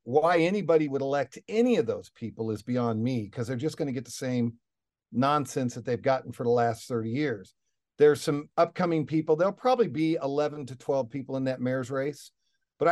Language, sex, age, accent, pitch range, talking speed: English, male, 50-69, American, 120-150 Hz, 205 wpm